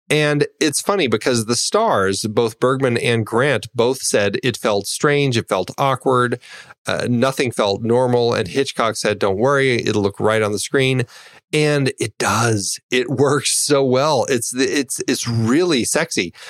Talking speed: 165 wpm